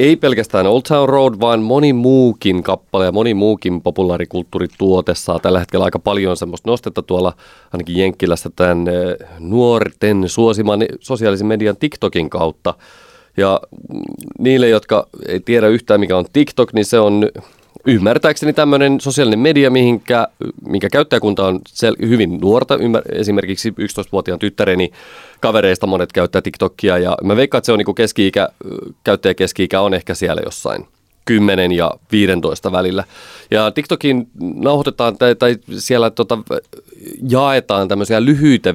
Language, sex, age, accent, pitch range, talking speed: Finnish, male, 30-49, native, 90-120 Hz, 135 wpm